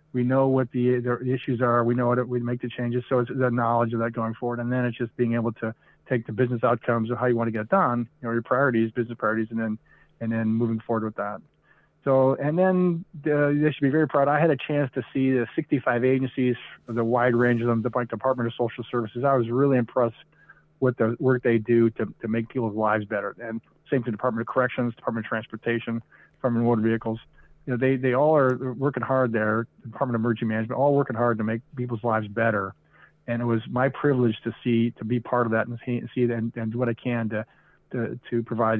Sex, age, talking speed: male, 40-59, 245 wpm